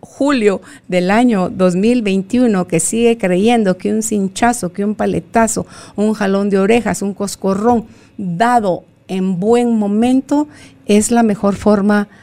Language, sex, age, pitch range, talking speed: Spanish, female, 50-69, 175-225 Hz, 135 wpm